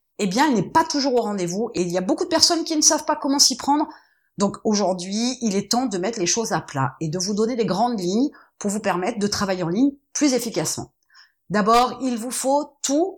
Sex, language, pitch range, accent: female, French, 190-270 Hz, French